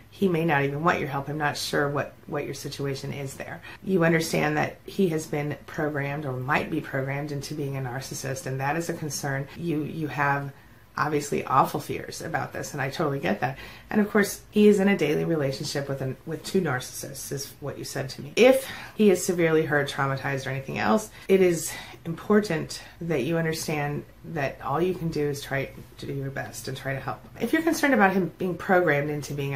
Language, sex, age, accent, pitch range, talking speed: English, female, 30-49, American, 135-165 Hz, 220 wpm